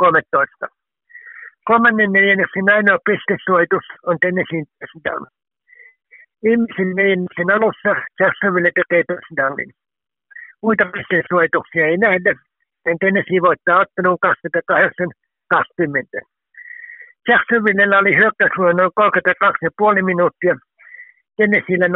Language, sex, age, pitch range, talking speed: Finnish, male, 60-79, 180-230 Hz, 75 wpm